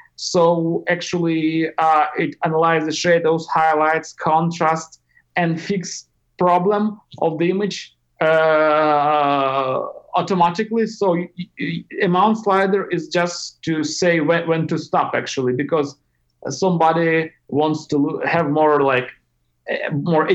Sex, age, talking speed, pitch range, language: male, 50-69, 110 wpm, 155-190 Hz, English